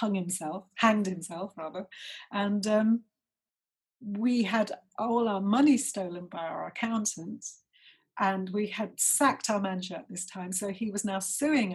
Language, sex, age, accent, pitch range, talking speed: English, female, 40-59, British, 195-235 Hz, 155 wpm